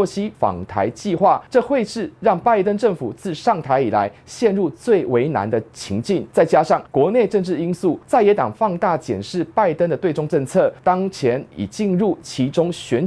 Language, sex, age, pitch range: Chinese, male, 30-49, 135-205 Hz